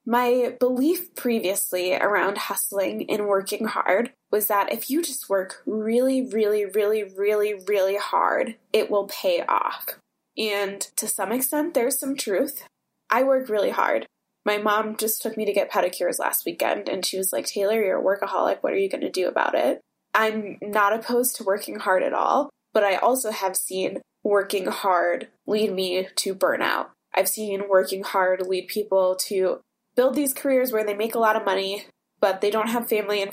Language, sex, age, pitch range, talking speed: English, female, 20-39, 195-235 Hz, 185 wpm